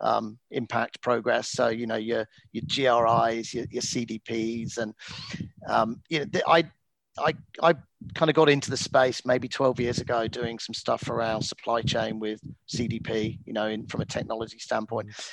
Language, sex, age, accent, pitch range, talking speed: English, male, 40-59, British, 120-160 Hz, 180 wpm